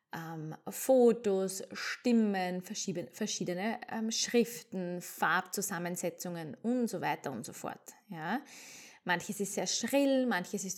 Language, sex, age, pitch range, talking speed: German, female, 20-39, 190-235 Hz, 110 wpm